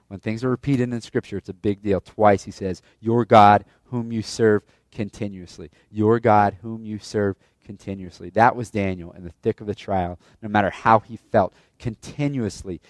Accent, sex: American, male